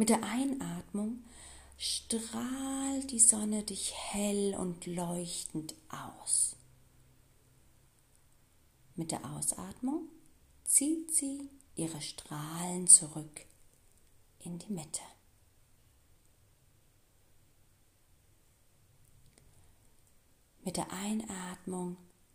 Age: 40-59